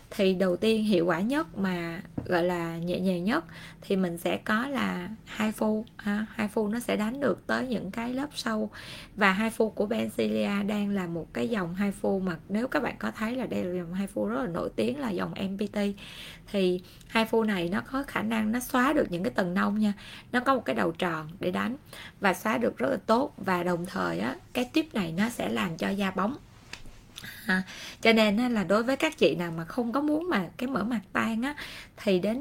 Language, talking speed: Vietnamese, 230 wpm